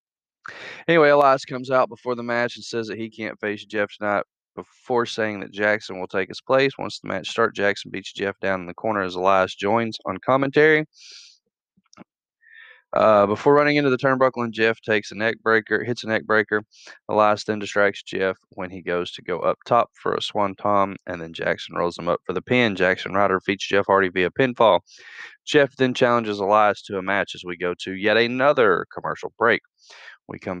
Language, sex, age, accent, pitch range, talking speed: English, male, 20-39, American, 95-125 Hz, 200 wpm